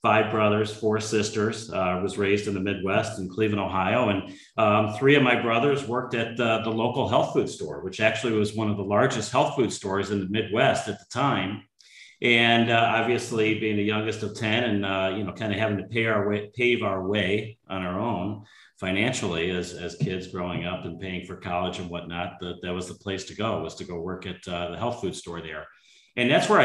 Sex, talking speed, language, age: male, 225 wpm, English, 40-59